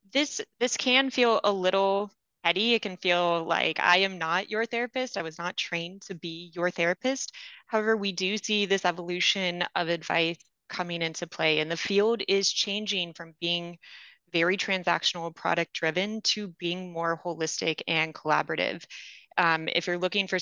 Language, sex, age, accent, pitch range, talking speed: English, female, 20-39, American, 165-195 Hz, 170 wpm